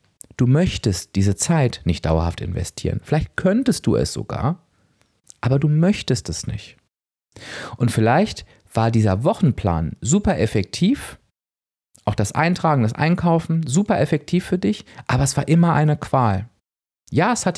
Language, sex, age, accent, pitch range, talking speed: German, male, 40-59, German, 95-145 Hz, 145 wpm